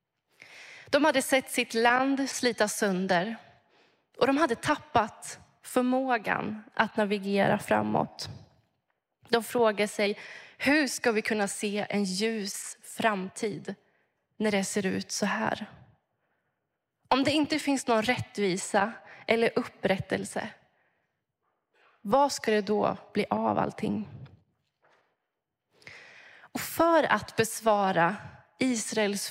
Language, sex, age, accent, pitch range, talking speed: Swedish, female, 20-39, native, 200-260 Hz, 105 wpm